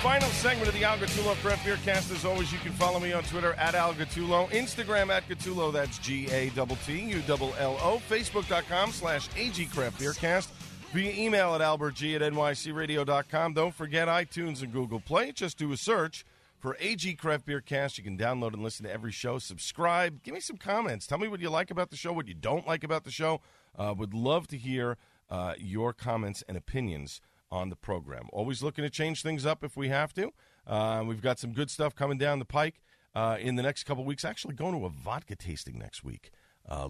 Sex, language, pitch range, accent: male, English, 110-160 Hz, American